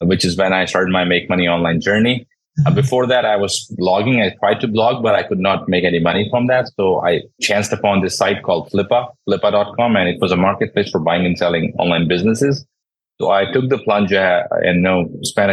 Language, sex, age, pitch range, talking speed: English, male, 30-49, 85-105 Hz, 220 wpm